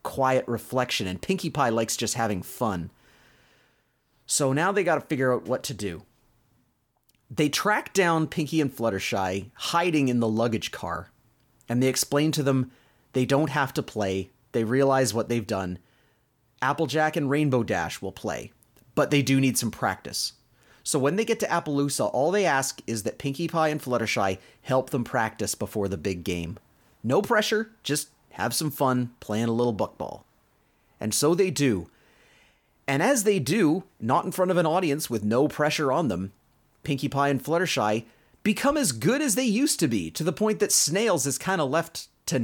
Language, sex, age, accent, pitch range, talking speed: English, male, 30-49, American, 115-155 Hz, 185 wpm